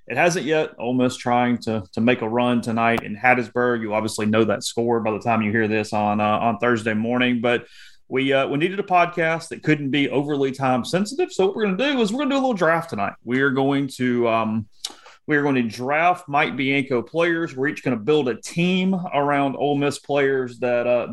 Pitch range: 115-165 Hz